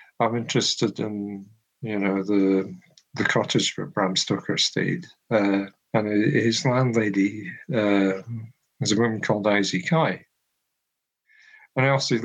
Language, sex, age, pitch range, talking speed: English, male, 50-69, 105-160 Hz, 120 wpm